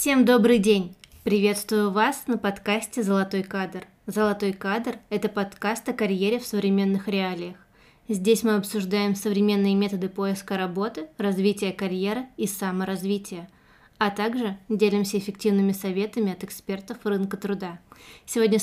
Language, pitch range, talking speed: Russian, 200-230 Hz, 125 wpm